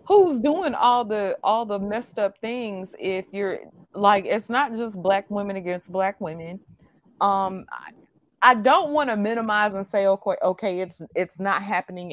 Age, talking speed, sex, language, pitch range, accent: 30-49, 175 wpm, female, English, 175-215 Hz, American